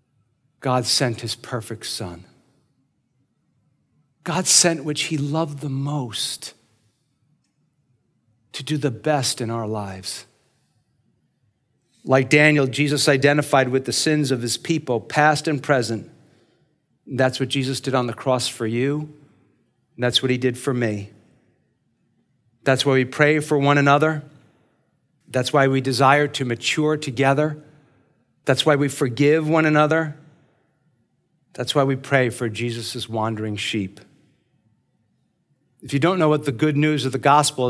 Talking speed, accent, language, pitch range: 140 wpm, American, English, 130-155 Hz